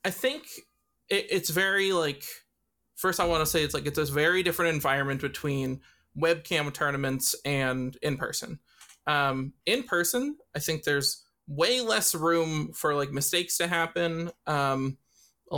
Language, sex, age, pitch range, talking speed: English, male, 20-39, 145-185 Hz, 150 wpm